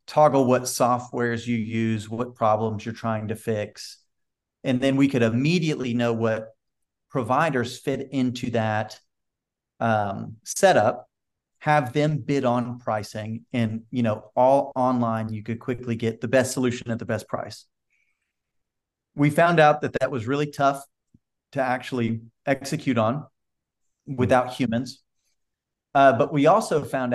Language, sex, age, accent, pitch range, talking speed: English, male, 40-59, American, 115-135 Hz, 140 wpm